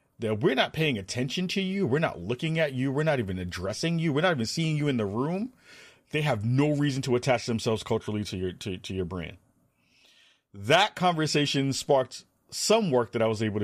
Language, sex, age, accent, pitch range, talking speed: English, male, 30-49, American, 95-125 Hz, 210 wpm